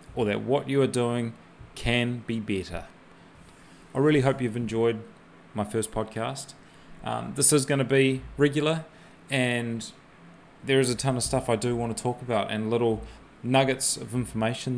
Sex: male